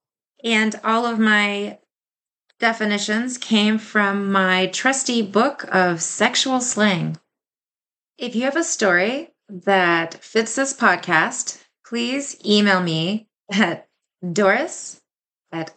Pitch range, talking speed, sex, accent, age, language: 180-215 Hz, 105 wpm, female, American, 30-49, English